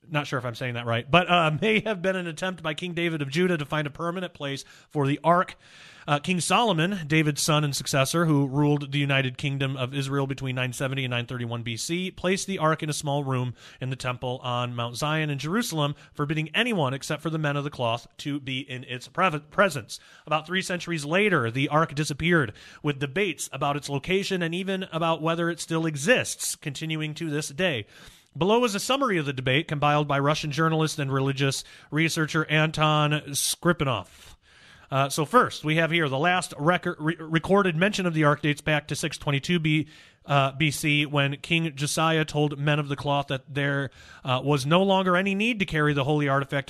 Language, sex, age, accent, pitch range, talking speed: English, male, 30-49, American, 140-170 Hz, 200 wpm